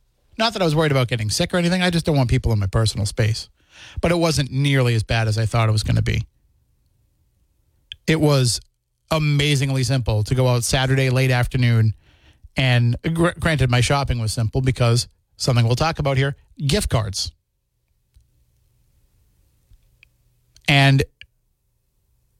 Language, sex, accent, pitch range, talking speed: English, male, American, 110-145 Hz, 155 wpm